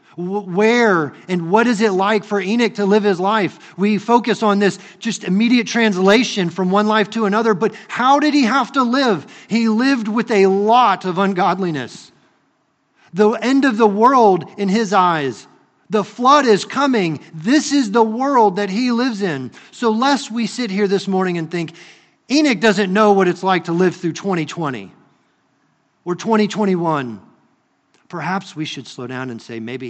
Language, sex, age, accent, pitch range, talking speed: English, male, 40-59, American, 140-210 Hz, 175 wpm